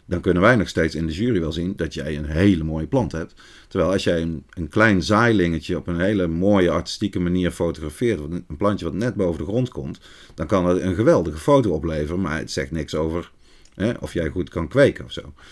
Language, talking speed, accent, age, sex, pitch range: Dutch, 225 wpm, Dutch, 40-59, male, 80-110 Hz